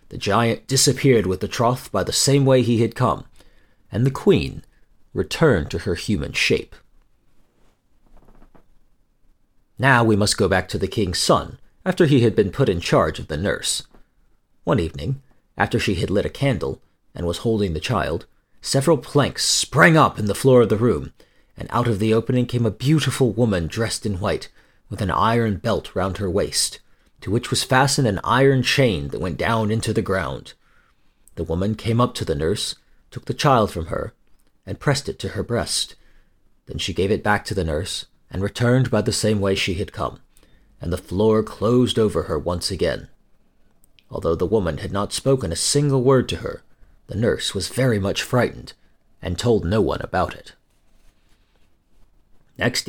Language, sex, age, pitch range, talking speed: English, male, 40-59, 100-130 Hz, 185 wpm